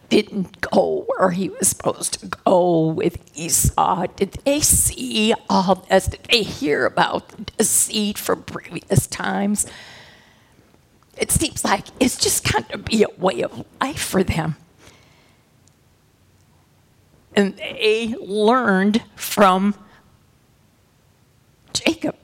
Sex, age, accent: female, 50-69, American